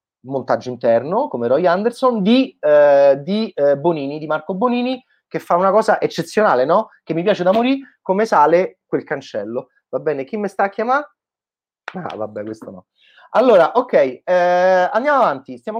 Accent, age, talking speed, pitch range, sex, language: native, 30-49, 170 wpm, 120-195 Hz, male, Italian